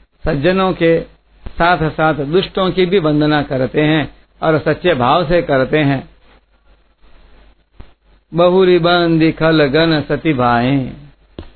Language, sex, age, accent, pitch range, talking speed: Hindi, male, 60-79, native, 140-180 Hz, 105 wpm